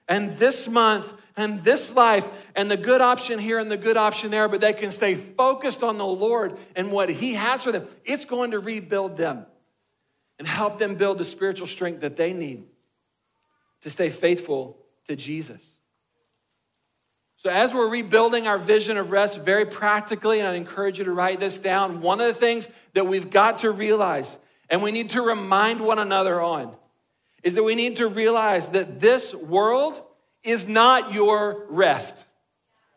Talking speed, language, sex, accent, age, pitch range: 180 wpm, English, male, American, 50-69, 200-250 Hz